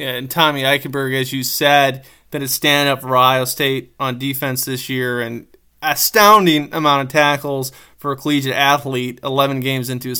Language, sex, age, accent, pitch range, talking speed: English, male, 20-39, American, 130-150 Hz, 175 wpm